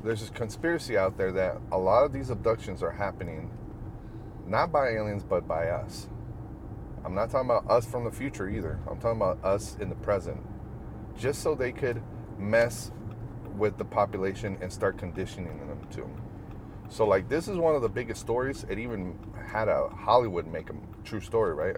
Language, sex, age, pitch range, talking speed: English, male, 30-49, 95-115 Hz, 185 wpm